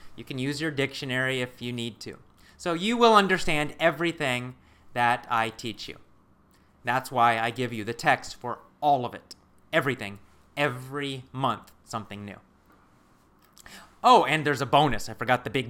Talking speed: 165 wpm